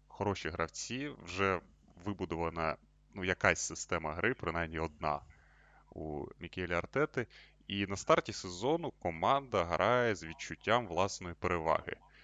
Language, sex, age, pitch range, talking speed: Russian, male, 20-39, 85-110 Hz, 115 wpm